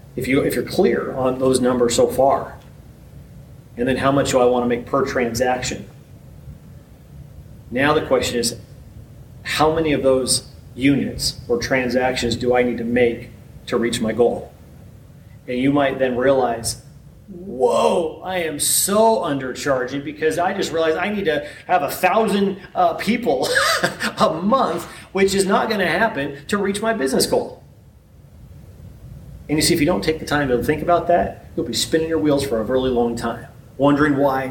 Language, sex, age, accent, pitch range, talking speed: English, male, 30-49, American, 125-180 Hz, 175 wpm